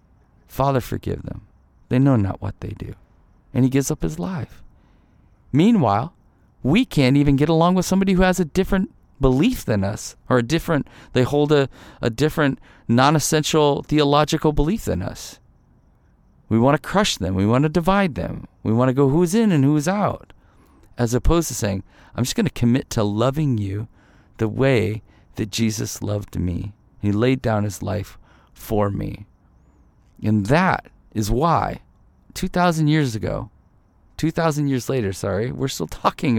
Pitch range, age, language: 100-150 Hz, 40-59, English